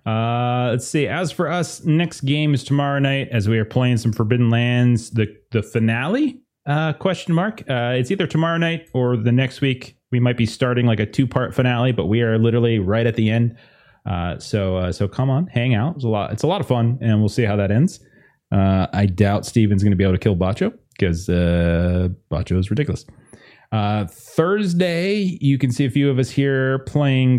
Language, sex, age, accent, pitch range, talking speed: English, male, 30-49, American, 100-135 Hz, 215 wpm